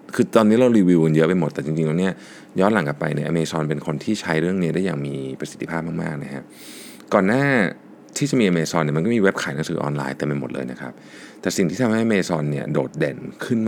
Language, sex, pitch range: Thai, male, 75-100 Hz